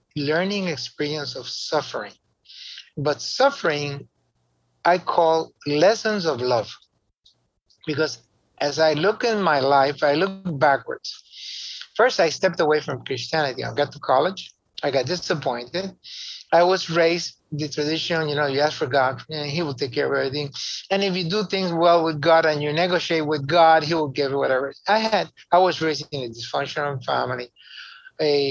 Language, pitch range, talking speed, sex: English, 140-190 Hz, 170 wpm, male